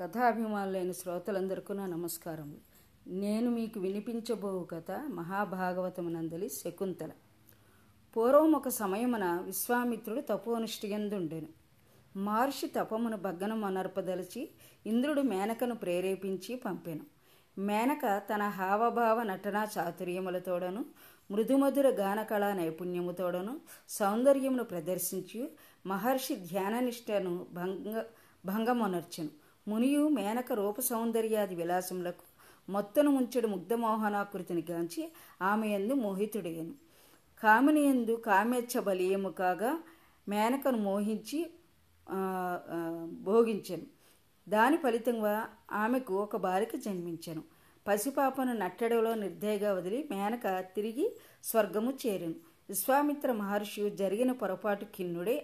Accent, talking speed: native, 80 wpm